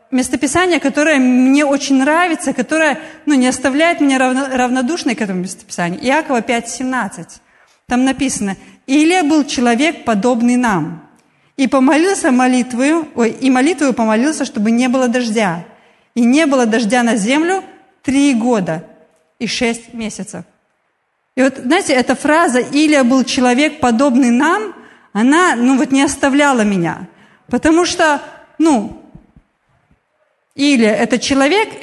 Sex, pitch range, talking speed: female, 240-300 Hz, 125 wpm